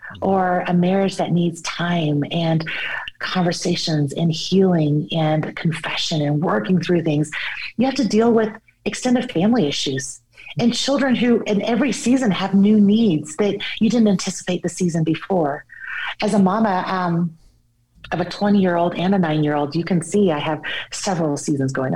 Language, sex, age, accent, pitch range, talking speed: English, female, 30-49, American, 155-205 Hz, 170 wpm